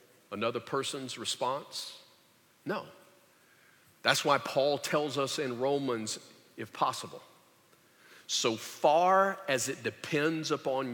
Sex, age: male, 50-69